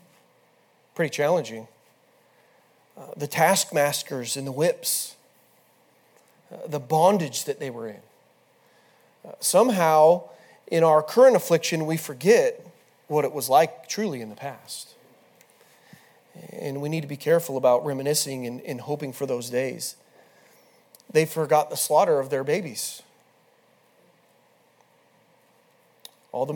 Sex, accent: male, American